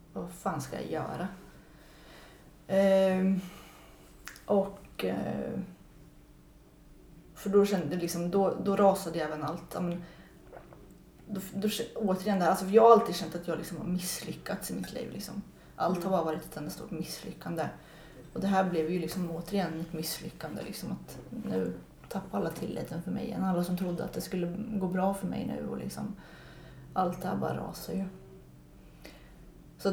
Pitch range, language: 165-195 Hz, Swedish